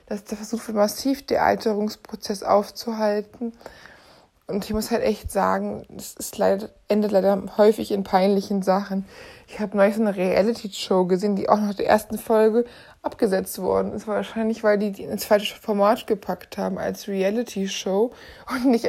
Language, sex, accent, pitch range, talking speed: German, female, German, 195-225 Hz, 165 wpm